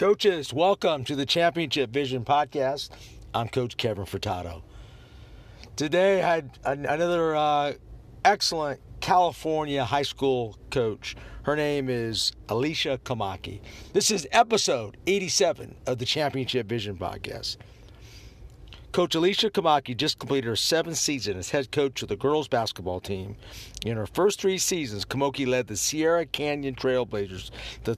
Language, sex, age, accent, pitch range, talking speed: English, male, 50-69, American, 110-155 Hz, 135 wpm